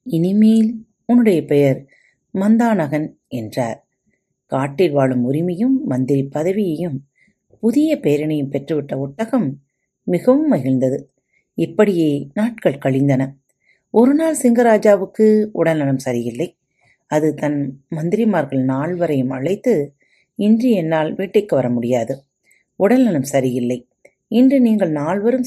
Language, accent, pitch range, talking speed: Tamil, native, 135-215 Hz, 90 wpm